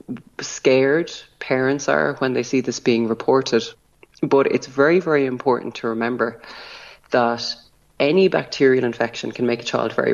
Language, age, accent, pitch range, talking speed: English, 30-49, Irish, 115-135 Hz, 150 wpm